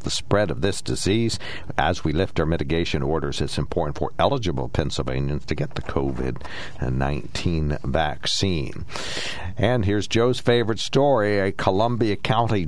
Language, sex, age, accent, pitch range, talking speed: English, male, 60-79, American, 75-100 Hz, 140 wpm